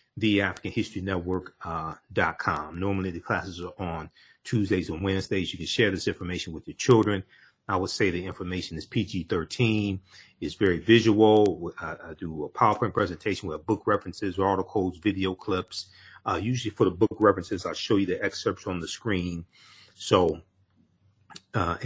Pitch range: 90-110 Hz